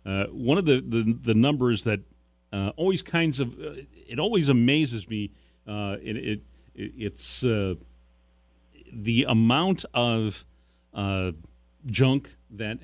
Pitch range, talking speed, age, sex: 95-125 Hz, 130 wpm, 40-59, male